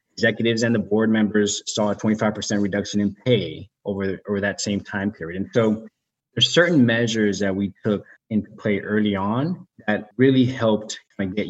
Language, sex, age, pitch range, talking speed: English, male, 20-39, 100-115 Hz, 175 wpm